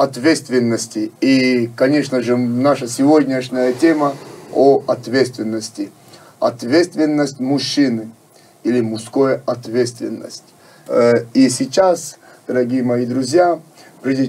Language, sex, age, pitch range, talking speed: Russian, male, 40-59, 125-165 Hz, 85 wpm